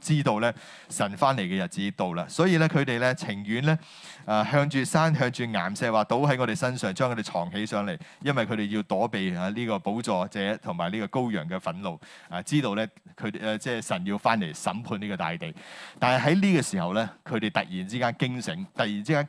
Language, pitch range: Chinese, 110-160 Hz